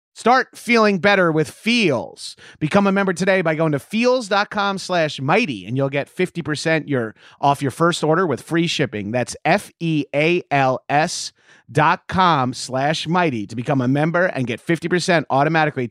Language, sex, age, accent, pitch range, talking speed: English, male, 30-49, American, 145-190 Hz, 155 wpm